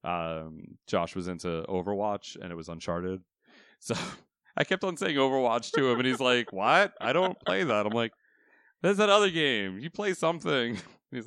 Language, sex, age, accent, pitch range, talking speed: English, male, 30-49, American, 95-125 Hz, 185 wpm